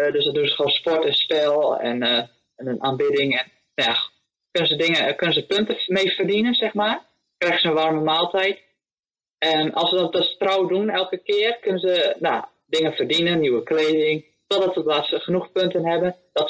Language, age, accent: English, 20-39, Dutch